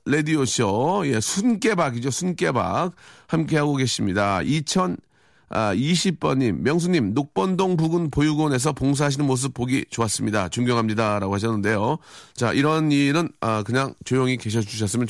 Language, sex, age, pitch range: Korean, male, 40-59, 105-150 Hz